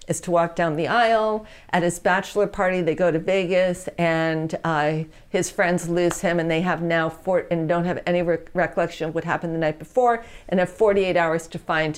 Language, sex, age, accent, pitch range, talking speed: English, female, 50-69, American, 155-180 Hz, 215 wpm